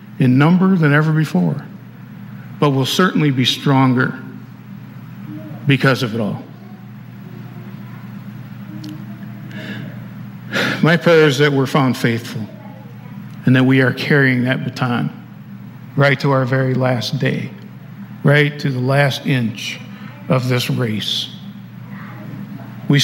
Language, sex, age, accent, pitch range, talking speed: English, male, 50-69, American, 130-160 Hz, 110 wpm